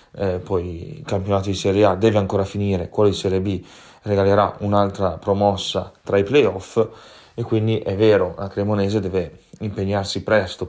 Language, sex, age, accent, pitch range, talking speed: Italian, male, 20-39, native, 95-110 Hz, 165 wpm